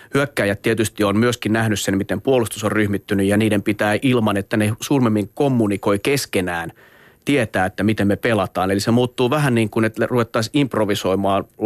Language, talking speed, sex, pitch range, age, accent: Finnish, 170 wpm, male, 105-120 Hz, 30-49, native